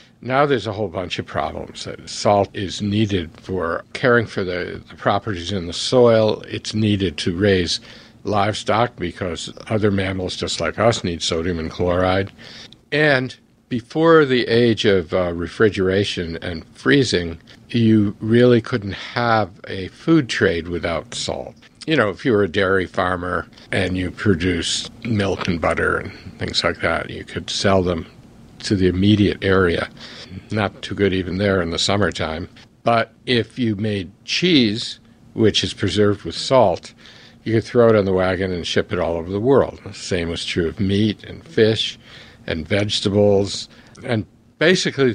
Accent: American